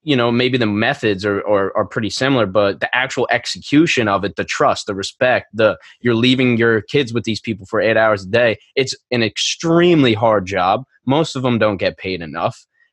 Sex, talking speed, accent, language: male, 210 wpm, American, English